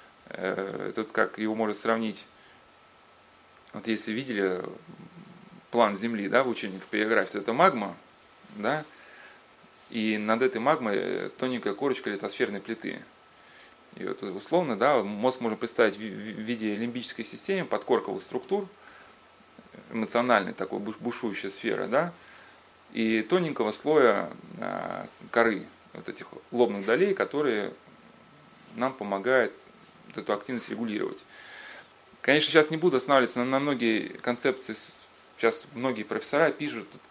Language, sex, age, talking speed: Russian, male, 30-49, 115 wpm